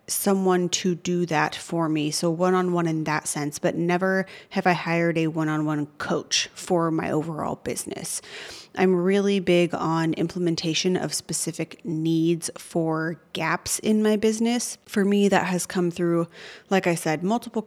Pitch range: 165-190 Hz